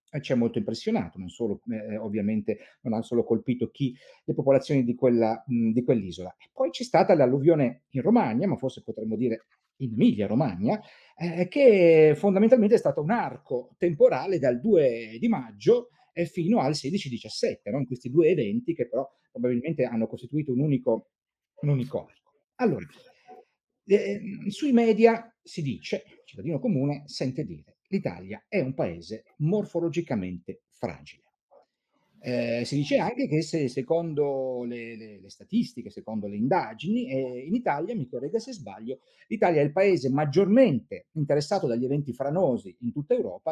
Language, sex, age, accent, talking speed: Italian, male, 40-59, native, 155 wpm